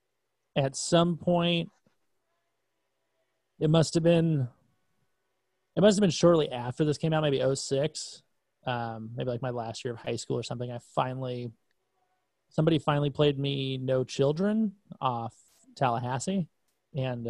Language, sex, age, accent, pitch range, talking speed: English, male, 30-49, American, 125-155 Hz, 140 wpm